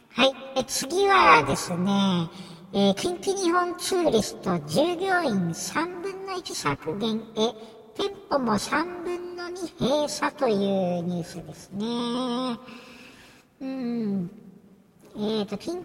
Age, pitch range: 60-79, 180-280 Hz